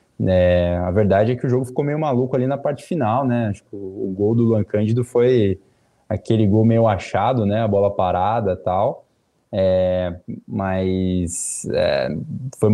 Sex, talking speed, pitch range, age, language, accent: male, 165 wpm, 100-120 Hz, 20-39, Portuguese, Brazilian